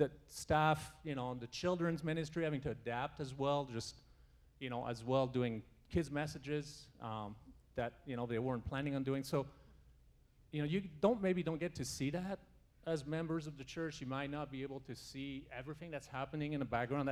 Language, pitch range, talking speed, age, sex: English, 110-145 Hz, 205 wpm, 40-59, male